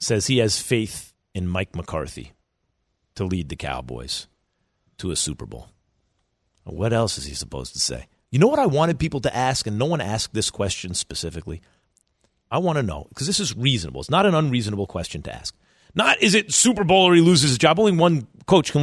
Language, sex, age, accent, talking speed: English, male, 40-59, American, 210 wpm